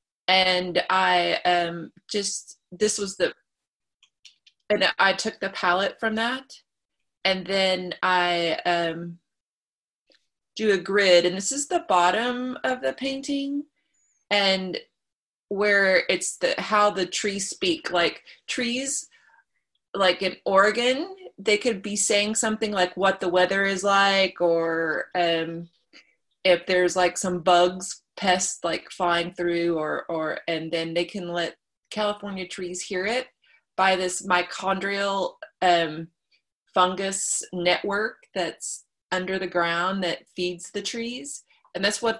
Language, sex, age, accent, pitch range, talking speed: English, female, 20-39, American, 175-210 Hz, 130 wpm